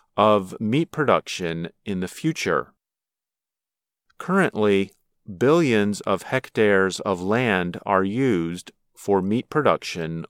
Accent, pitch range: American, 100-145 Hz